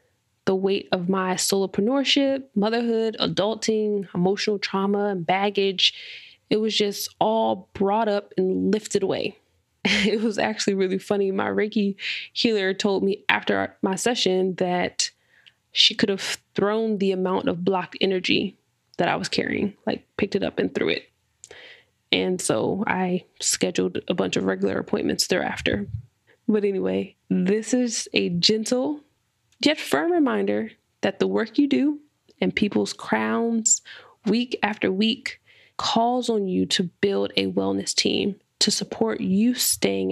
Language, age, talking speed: English, 20-39, 145 wpm